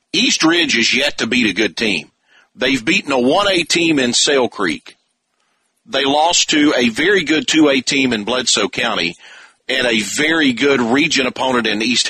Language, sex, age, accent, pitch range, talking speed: English, male, 40-59, American, 115-140 Hz, 180 wpm